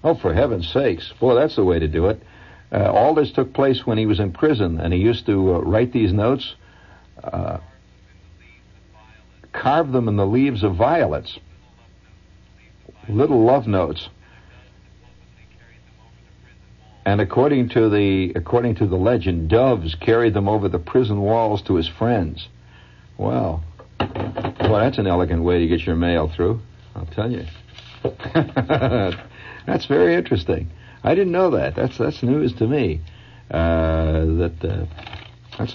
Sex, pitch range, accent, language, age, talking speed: male, 85-115 Hz, American, English, 60-79, 150 wpm